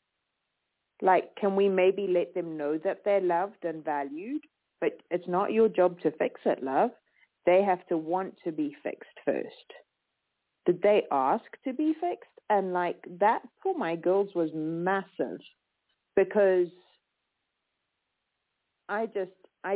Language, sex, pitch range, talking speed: English, female, 155-195 Hz, 145 wpm